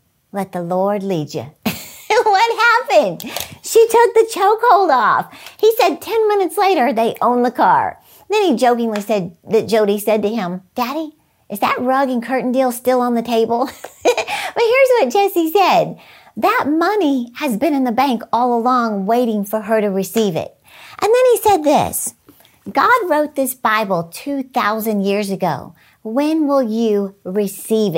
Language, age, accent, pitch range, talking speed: English, 50-69, American, 210-315 Hz, 165 wpm